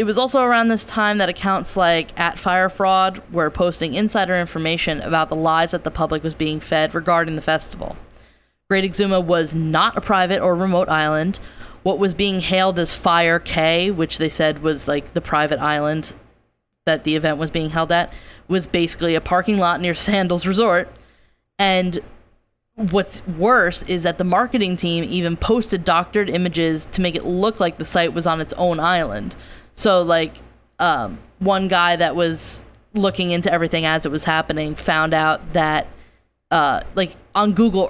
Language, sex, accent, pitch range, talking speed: English, female, American, 160-190 Hz, 175 wpm